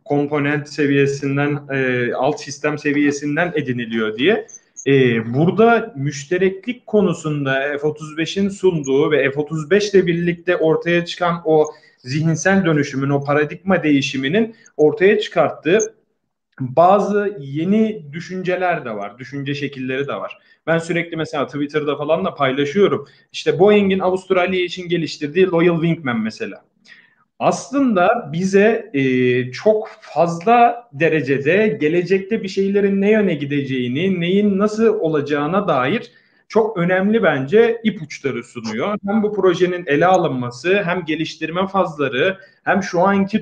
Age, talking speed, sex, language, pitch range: 40-59, 115 wpm, male, Turkish, 145-195 Hz